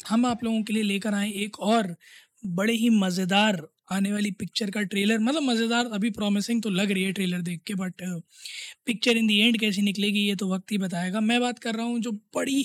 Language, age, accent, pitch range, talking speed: Hindi, 20-39, native, 195-230 Hz, 225 wpm